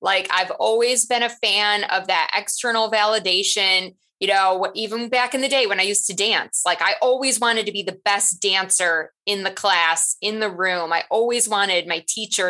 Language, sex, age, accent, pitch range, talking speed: English, female, 20-39, American, 195-255 Hz, 200 wpm